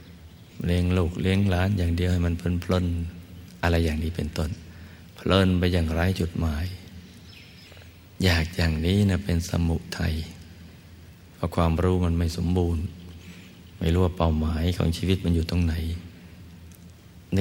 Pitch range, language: 85-95 Hz, Thai